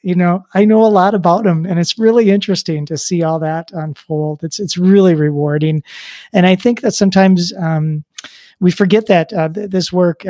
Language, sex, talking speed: English, male, 190 wpm